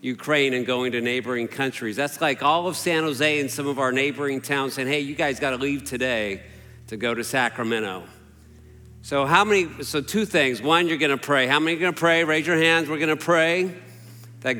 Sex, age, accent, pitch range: male, 50-69, American, 130-165 Hz